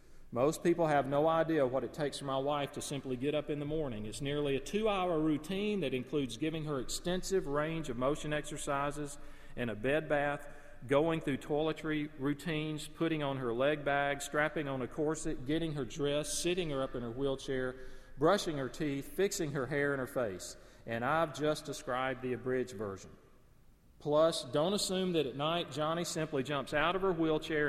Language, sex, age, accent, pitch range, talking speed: English, male, 40-59, American, 130-160 Hz, 190 wpm